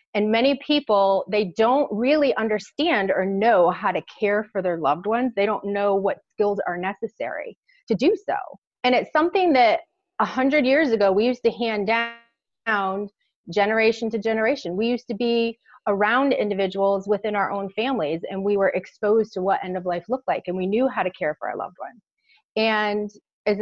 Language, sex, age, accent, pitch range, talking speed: English, female, 30-49, American, 195-235 Hz, 190 wpm